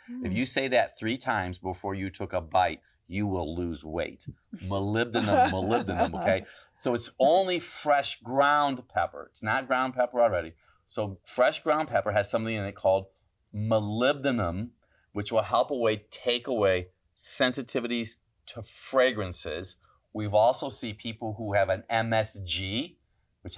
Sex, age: male, 40-59